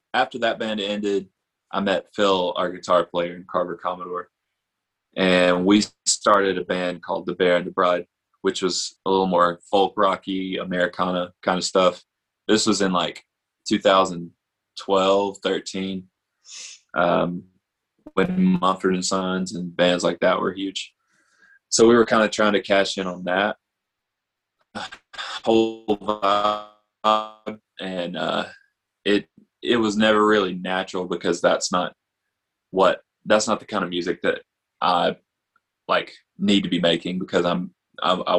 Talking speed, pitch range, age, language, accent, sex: 145 wpm, 90-105 Hz, 20-39, English, American, male